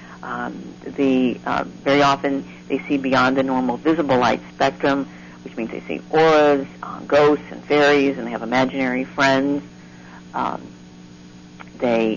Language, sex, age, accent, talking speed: English, female, 50-69, American, 145 wpm